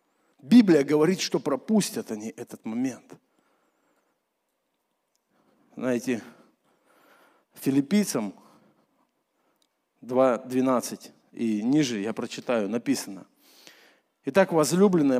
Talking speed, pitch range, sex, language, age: 70 wpm, 140-195 Hz, male, Russian, 50-69